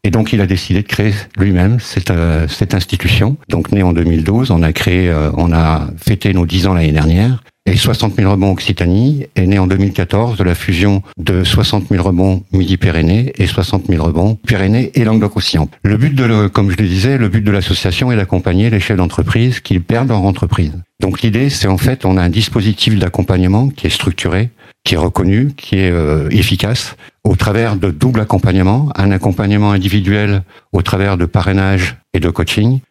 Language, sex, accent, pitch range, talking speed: French, male, French, 95-110 Hz, 195 wpm